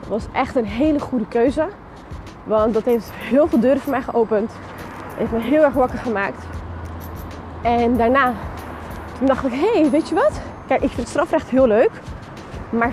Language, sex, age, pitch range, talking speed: Dutch, female, 20-39, 220-270 Hz, 185 wpm